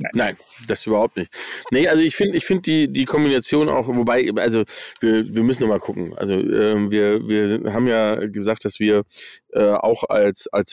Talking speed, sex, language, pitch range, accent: 195 wpm, male, German, 100-120 Hz, German